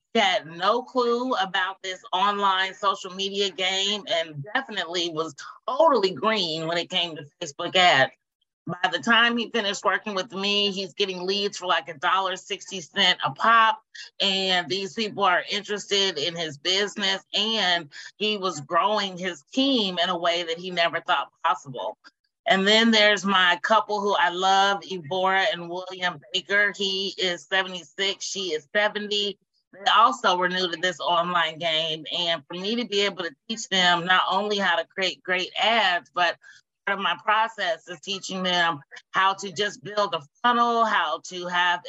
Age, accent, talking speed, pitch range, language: 30-49, American, 170 wpm, 175-205 Hz, English